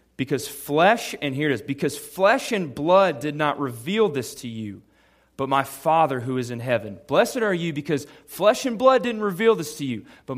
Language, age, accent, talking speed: English, 30-49, American, 210 wpm